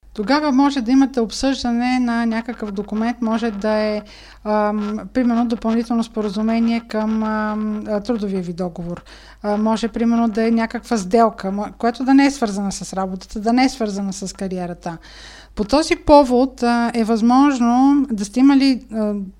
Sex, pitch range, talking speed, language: female, 215-250 Hz, 155 wpm, Bulgarian